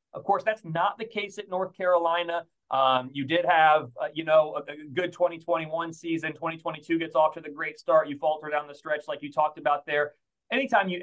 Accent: American